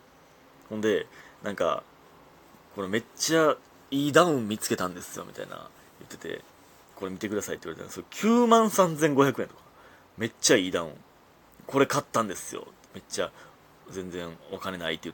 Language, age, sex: Japanese, 30-49, male